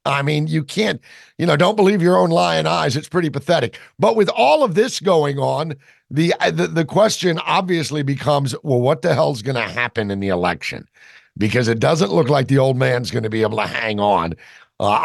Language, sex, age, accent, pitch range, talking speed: English, male, 50-69, American, 110-155 Hz, 215 wpm